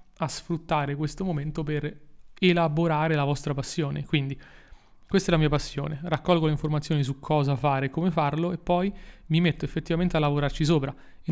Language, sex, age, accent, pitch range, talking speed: Italian, male, 30-49, native, 145-165 Hz, 175 wpm